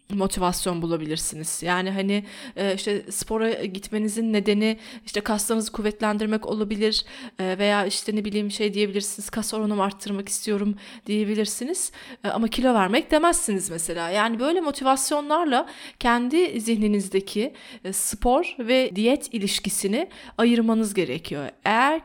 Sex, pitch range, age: female, 200-250 Hz, 30-49